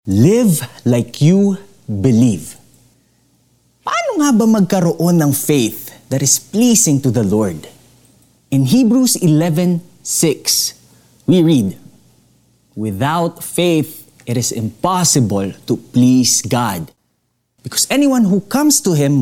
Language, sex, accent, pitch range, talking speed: Filipino, male, native, 120-180 Hz, 110 wpm